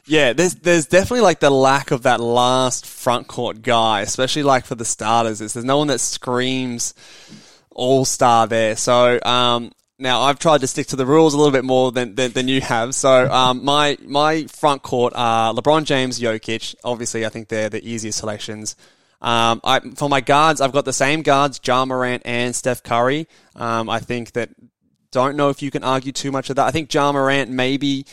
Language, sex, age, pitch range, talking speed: English, male, 20-39, 115-140 Hz, 205 wpm